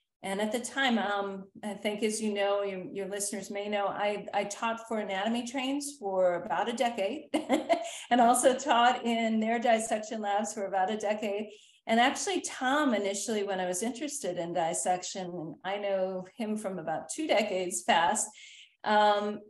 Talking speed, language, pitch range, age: 170 wpm, English, 190-230 Hz, 40-59